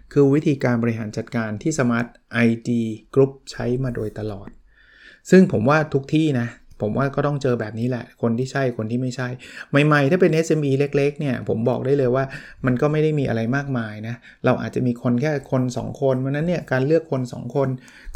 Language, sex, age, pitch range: Thai, male, 20-39, 120-145 Hz